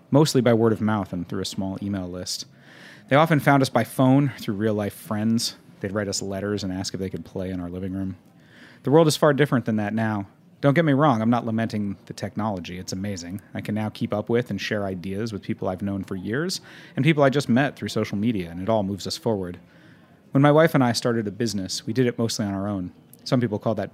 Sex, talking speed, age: male, 255 wpm, 30-49